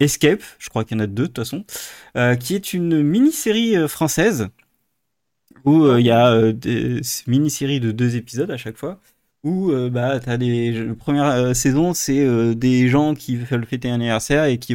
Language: French